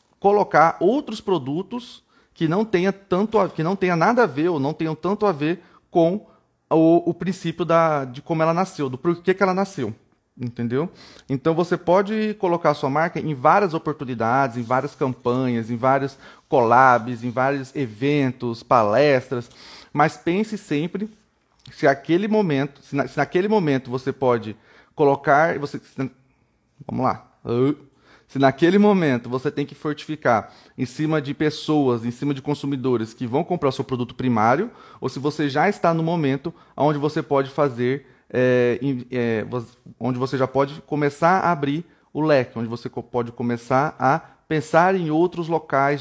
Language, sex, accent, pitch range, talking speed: Portuguese, male, Brazilian, 130-165 Hz, 165 wpm